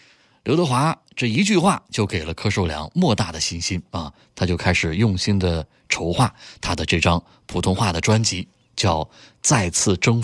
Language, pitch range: Chinese, 90-120 Hz